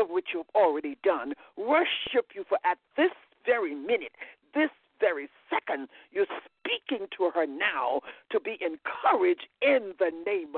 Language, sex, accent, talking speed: English, male, American, 140 wpm